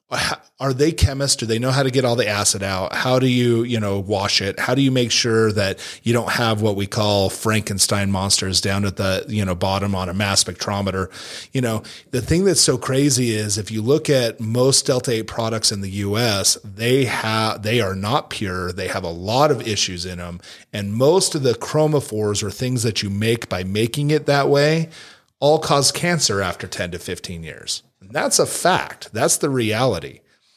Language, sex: English, male